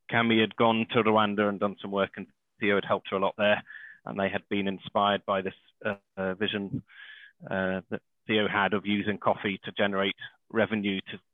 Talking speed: 200 wpm